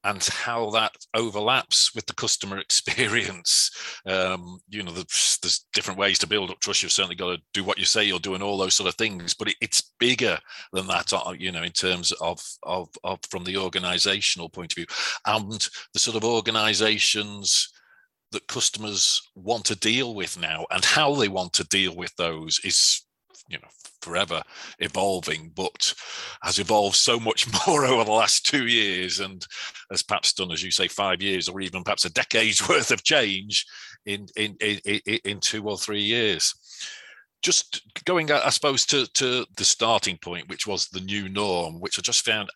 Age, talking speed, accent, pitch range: 40-59, 185 wpm, British, 90-105 Hz